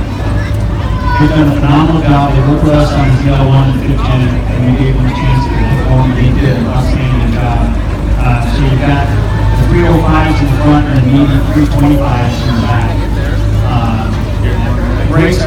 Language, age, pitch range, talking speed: English, 30-49, 110-140 Hz, 180 wpm